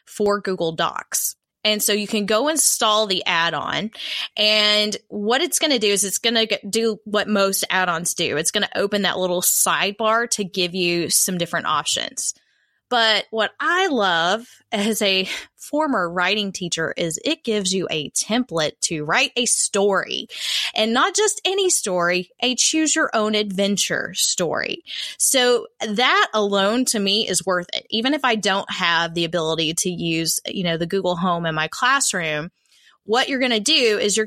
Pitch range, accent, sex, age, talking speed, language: 175-225 Hz, American, female, 20-39, 175 wpm, English